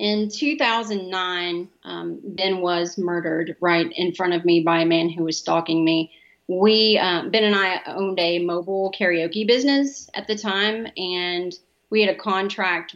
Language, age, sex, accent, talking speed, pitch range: English, 30-49, female, American, 165 wpm, 175-215 Hz